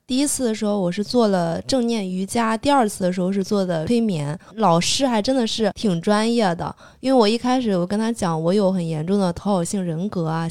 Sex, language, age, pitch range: female, Chinese, 20-39, 175-225 Hz